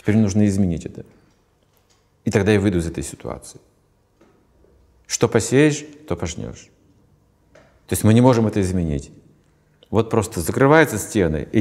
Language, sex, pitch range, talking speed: Russian, male, 95-125 Hz, 140 wpm